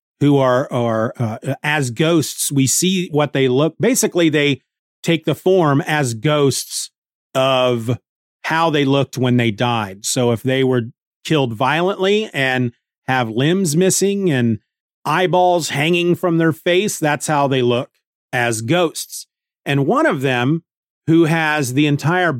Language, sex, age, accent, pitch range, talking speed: English, male, 40-59, American, 125-155 Hz, 145 wpm